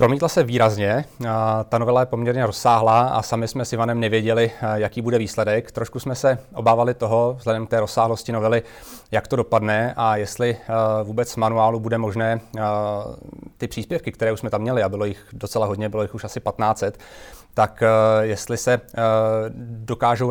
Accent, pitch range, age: native, 110-120 Hz, 30-49